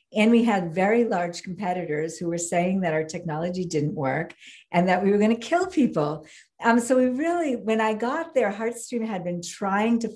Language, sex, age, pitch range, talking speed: English, female, 50-69, 165-210 Hz, 200 wpm